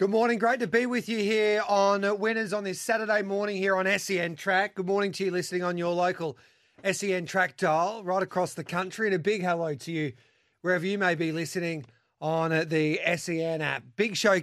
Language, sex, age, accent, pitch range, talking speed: English, male, 30-49, Australian, 155-190 Hz, 210 wpm